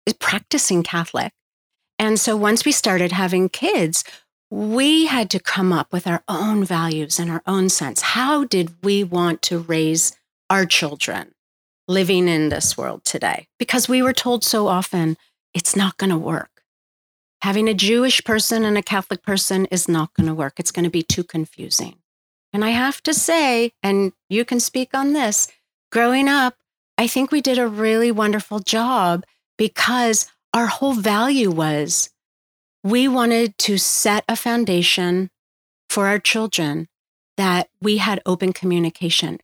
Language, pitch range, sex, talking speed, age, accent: English, 175-230 Hz, female, 160 wpm, 40-59, American